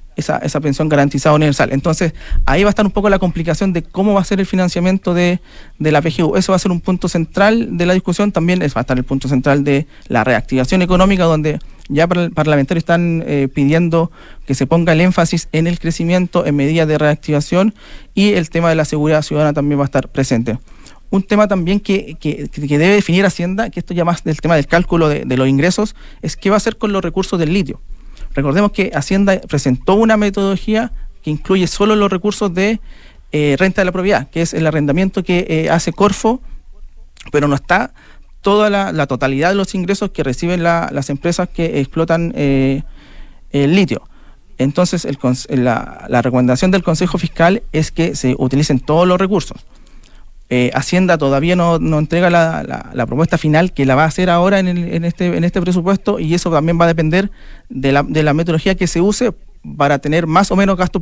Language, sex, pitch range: Spanish, male, 145-185 Hz